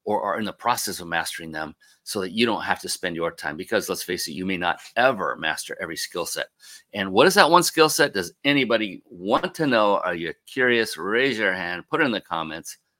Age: 40-59